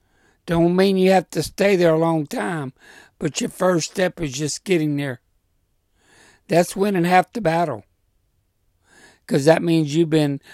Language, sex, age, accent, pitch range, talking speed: English, male, 60-79, American, 105-160 Hz, 160 wpm